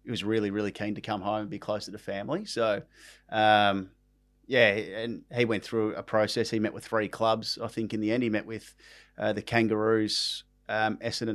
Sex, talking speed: male, 210 wpm